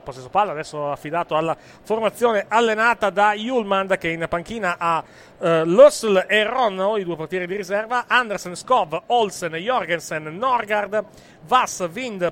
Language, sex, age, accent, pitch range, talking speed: Italian, male, 40-59, native, 165-220 Hz, 130 wpm